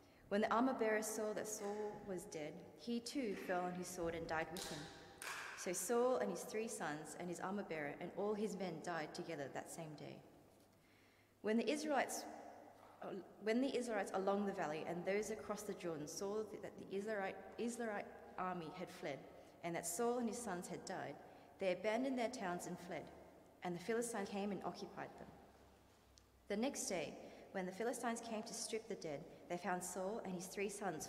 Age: 30-49